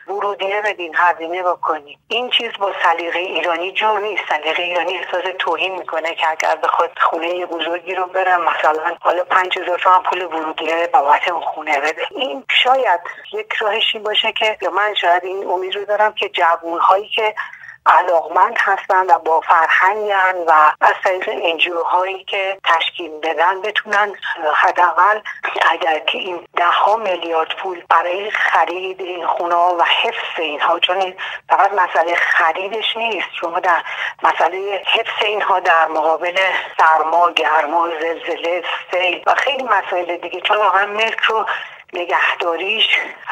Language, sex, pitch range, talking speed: Persian, female, 170-205 Hz, 145 wpm